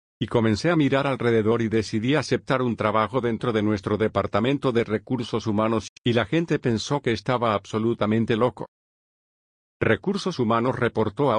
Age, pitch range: 50-69, 110-130 Hz